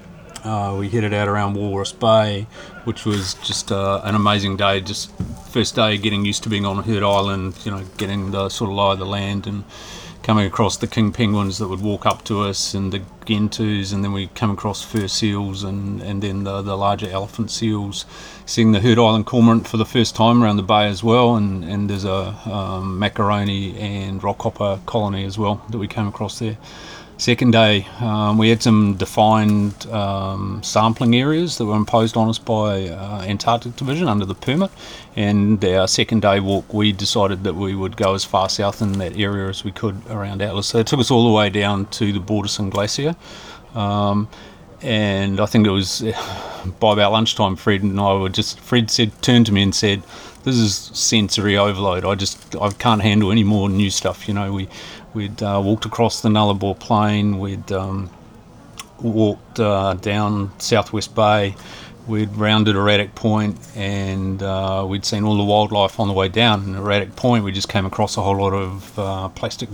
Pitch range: 100-110 Hz